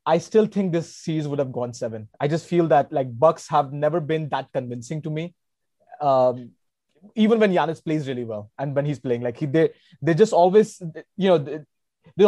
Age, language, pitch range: 20-39, English, 145-185 Hz